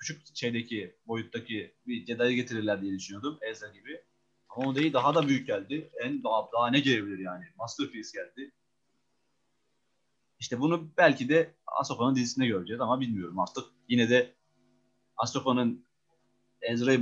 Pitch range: 115-145 Hz